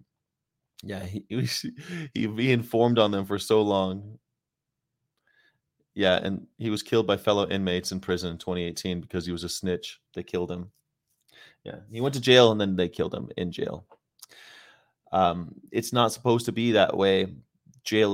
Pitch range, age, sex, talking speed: 90-110 Hz, 30-49, male, 170 wpm